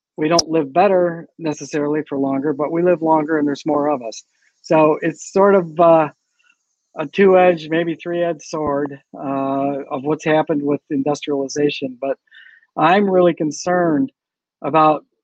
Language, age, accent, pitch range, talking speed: English, 50-69, American, 150-180 Hz, 145 wpm